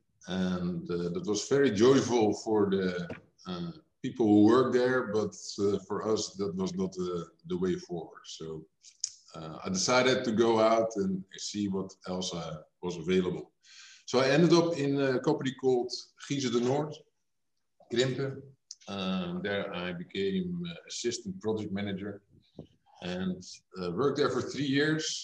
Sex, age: male, 50-69